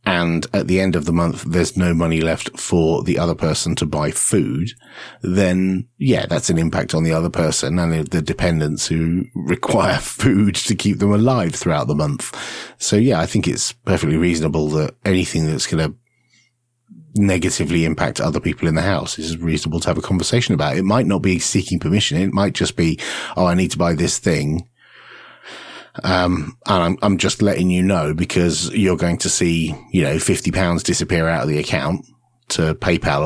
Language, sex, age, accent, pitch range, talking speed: English, male, 30-49, British, 80-95 Hz, 195 wpm